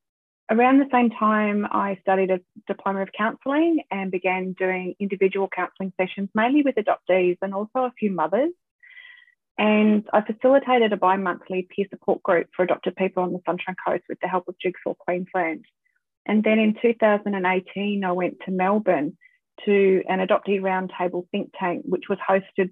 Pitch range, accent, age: 180-215 Hz, Australian, 30-49